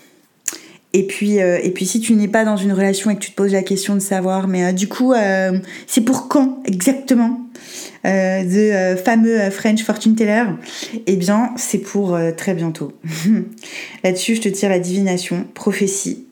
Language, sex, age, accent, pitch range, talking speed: French, female, 20-39, French, 180-210 Hz, 190 wpm